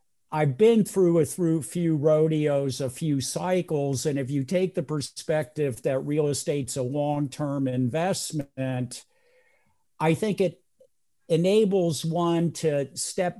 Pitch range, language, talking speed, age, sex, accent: 140-165 Hz, English, 125 wpm, 50-69, male, American